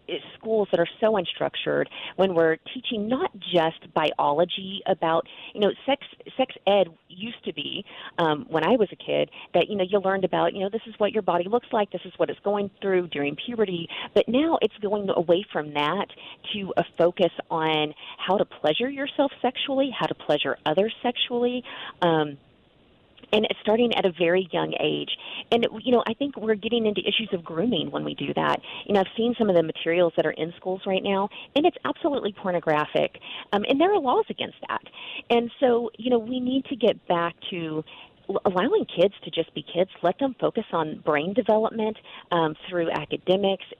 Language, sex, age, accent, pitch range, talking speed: English, female, 40-59, American, 170-230 Hz, 195 wpm